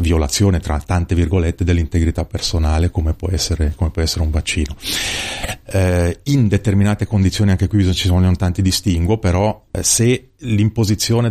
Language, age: Italian, 30-49